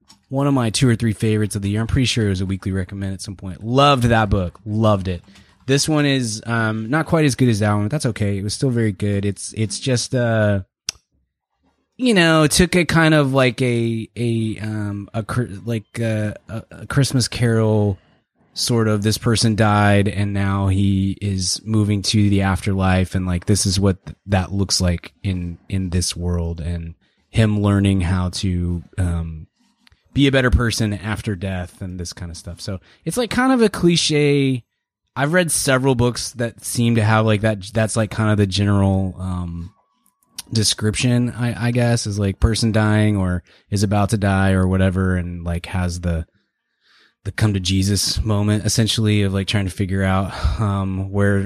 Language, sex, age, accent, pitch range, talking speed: English, male, 20-39, American, 95-120 Hz, 190 wpm